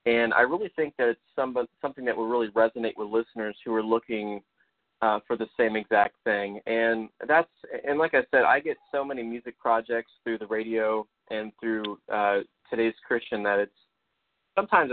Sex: male